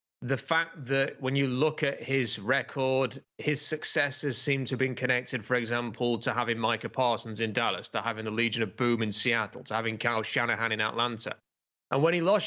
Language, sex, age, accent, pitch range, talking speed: English, male, 30-49, British, 120-150 Hz, 200 wpm